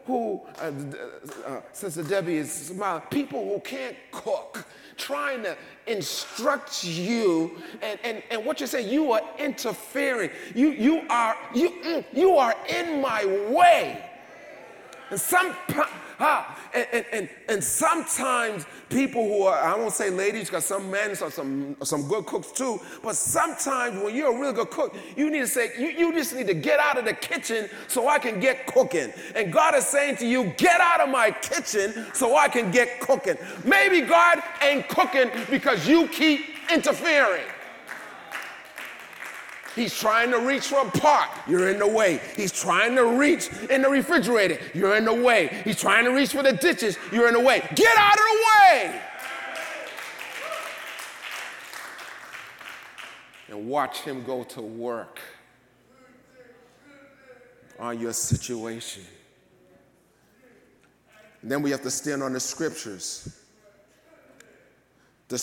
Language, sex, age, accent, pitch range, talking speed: English, male, 30-49, American, 180-285 Hz, 150 wpm